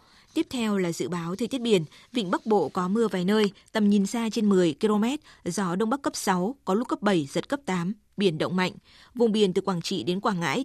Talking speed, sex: 250 wpm, female